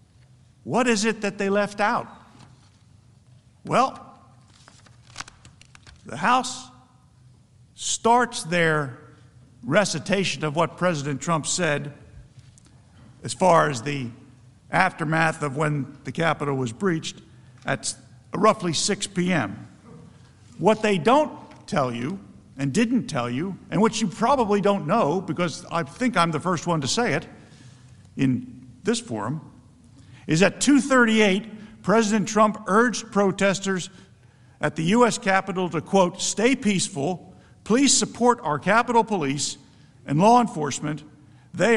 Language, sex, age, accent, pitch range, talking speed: English, male, 50-69, American, 135-210 Hz, 120 wpm